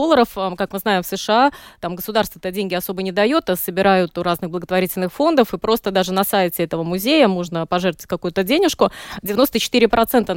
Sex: female